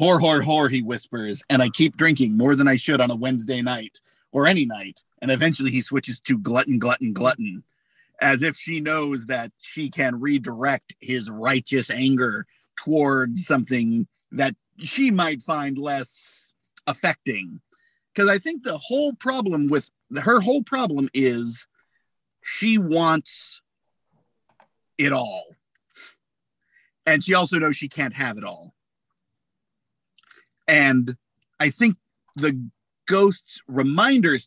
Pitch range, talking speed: 130-200 Hz, 135 wpm